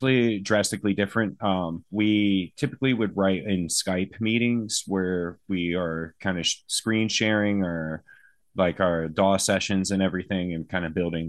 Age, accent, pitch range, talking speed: 20-39, American, 85-100 Hz, 150 wpm